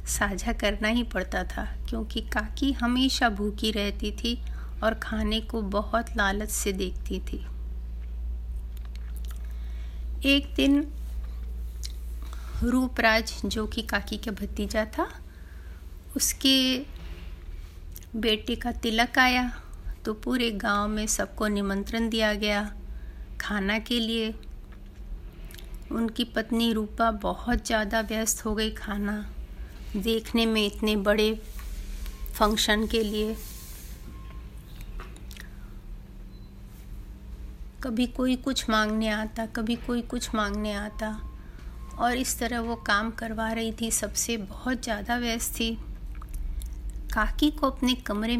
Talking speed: 110 wpm